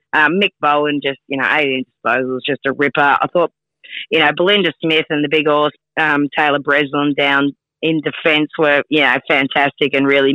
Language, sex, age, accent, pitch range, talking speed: English, female, 30-49, Australian, 135-155 Hz, 185 wpm